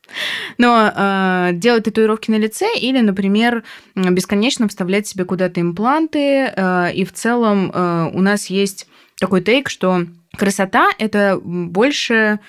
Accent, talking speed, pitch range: native, 130 wpm, 175-220 Hz